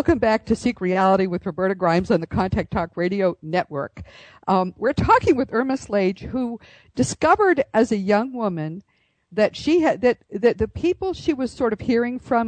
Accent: American